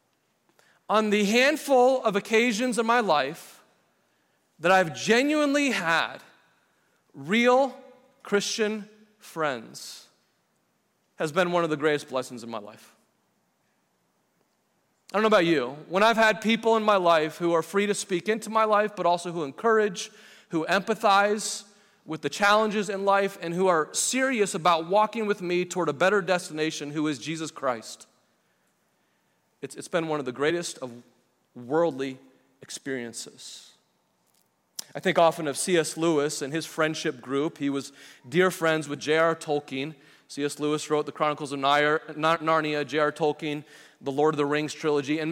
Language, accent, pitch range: English, American, 155-210 Hz